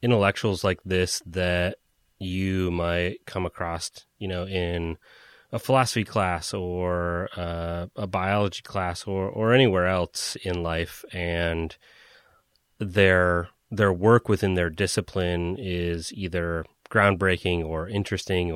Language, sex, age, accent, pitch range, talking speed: English, male, 30-49, American, 85-95 Hz, 120 wpm